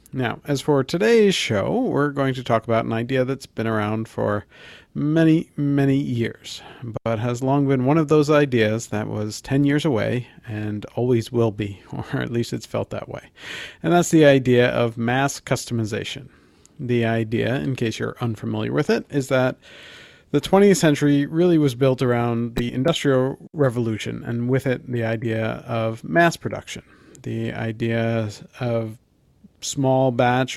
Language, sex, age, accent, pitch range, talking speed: English, male, 40-59, American, 110-135 Hz, 165 wpm